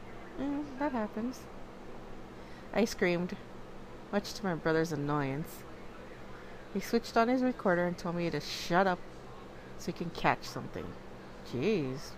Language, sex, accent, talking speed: English, female, American, 135 wpm